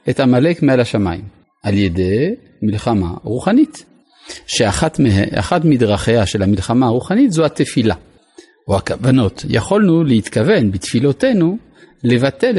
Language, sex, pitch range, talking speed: Hebrew, male, 115-170 Hz, 105 wpm